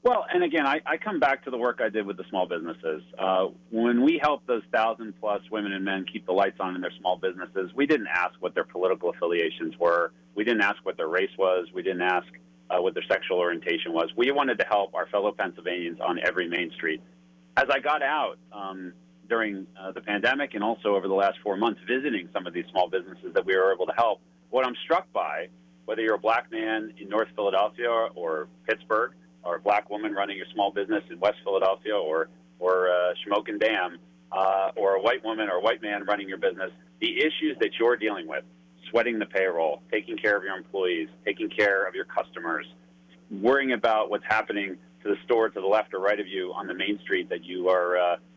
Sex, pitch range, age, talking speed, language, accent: male, 85-115 Hz, 40-59, 225 wpm, English, American